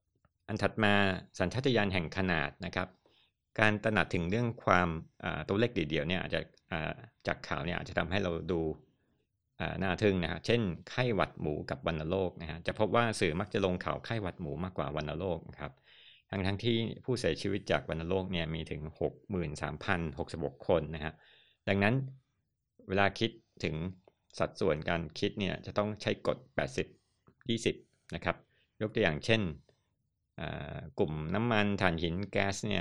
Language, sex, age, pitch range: Thai, male, 60-79, 85-105 Hz